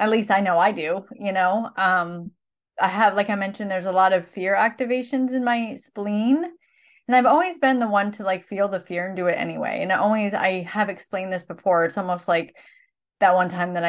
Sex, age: female, 20-39